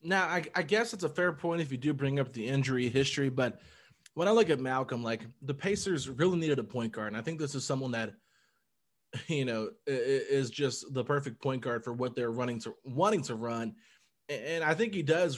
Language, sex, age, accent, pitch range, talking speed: English, male, 20-39, American, 125-155 Hz, 225 wpm